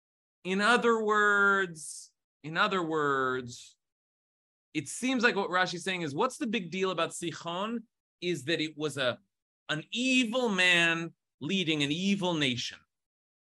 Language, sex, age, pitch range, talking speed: English, male, 30-49, 125-200 Hz, 140 wpm